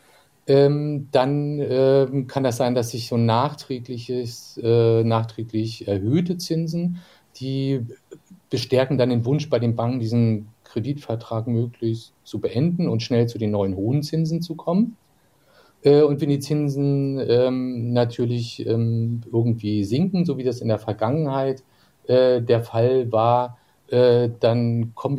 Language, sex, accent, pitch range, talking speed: German, male, German, 115-145 Hz, 140 wpm